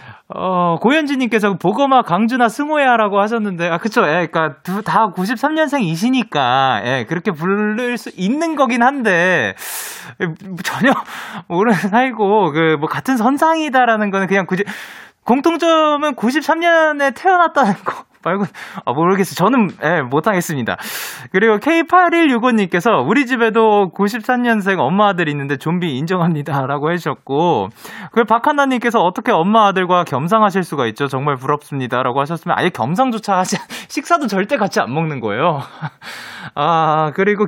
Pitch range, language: 165-245 Hz, Korean